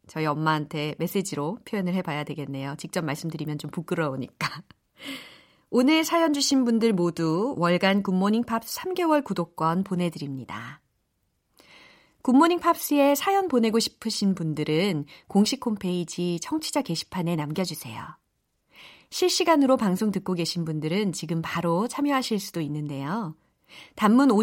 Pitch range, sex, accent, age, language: 165-255 Hz, female, native, 40-59, Korean